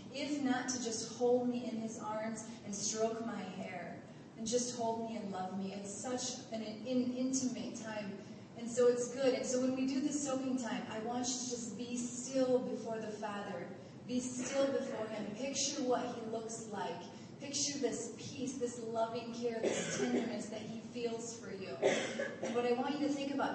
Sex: female